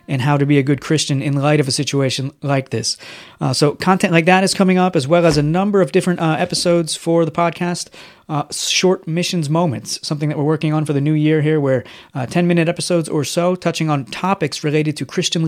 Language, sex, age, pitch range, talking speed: English, male, 30-49, 145-170 Hz, 235 wpm